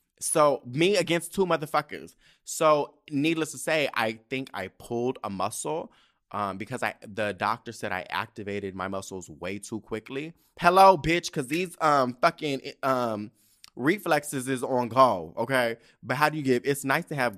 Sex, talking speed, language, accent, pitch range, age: male, 170 wpm, English, American, 110-150 Hz, 20-39